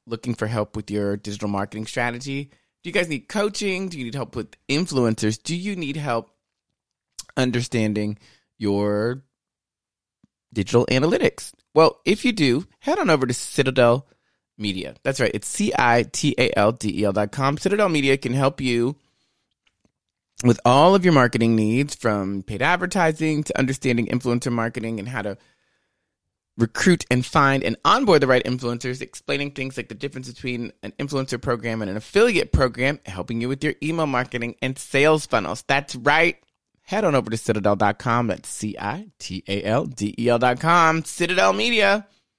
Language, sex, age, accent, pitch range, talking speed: English, male, 30-49, American, 110-145 Hz, 155 wpm